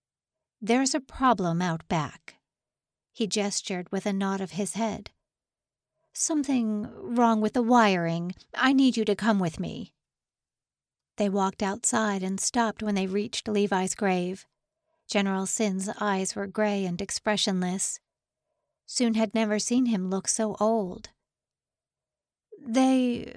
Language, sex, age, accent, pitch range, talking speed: English, female, 50-69, American, 195-235 Hz, 130 wpm